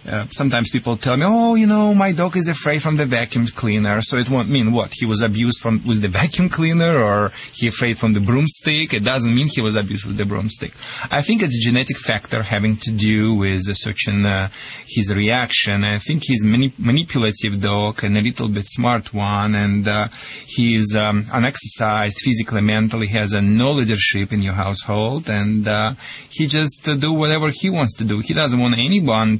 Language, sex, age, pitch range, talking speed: English, male, 30-49, 110-145 Hz, 205 wpm